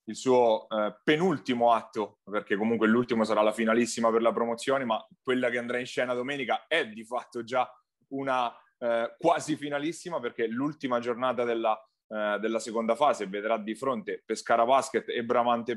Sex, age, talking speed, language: male, 30-49, 170 wpm, Italian